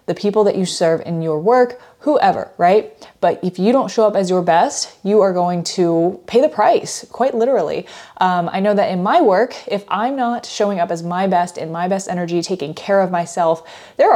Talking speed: 220 wpm